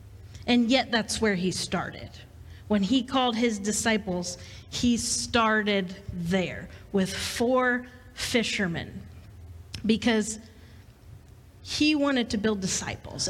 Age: 40-59